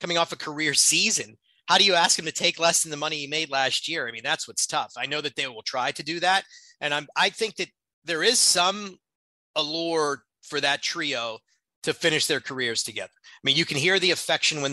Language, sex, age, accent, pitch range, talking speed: English, male, 30-49, American, 135-170 Hz, 240 wpm